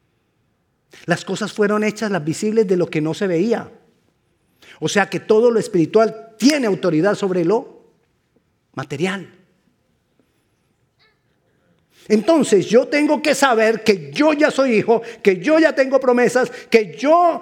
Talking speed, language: 140 wpm, Spanish